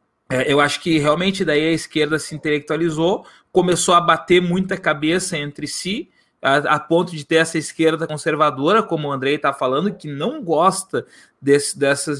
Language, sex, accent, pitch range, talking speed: Portuguese, male, Brazilian, 155-195 Hz, 170 wpm